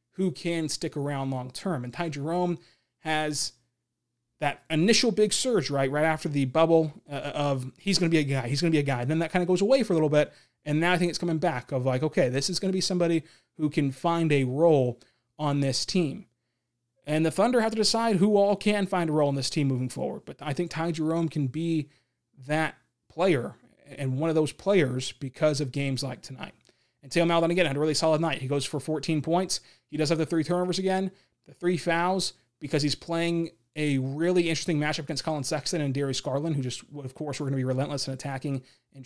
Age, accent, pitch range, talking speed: 30-49, American, 135-170 Hz, 230 wpm